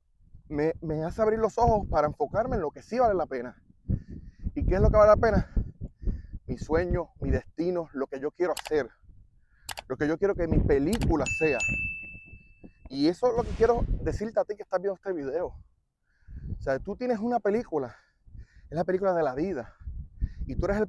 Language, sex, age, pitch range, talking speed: Spanish, male, 30-49, 120-200 Hz, 200 wpm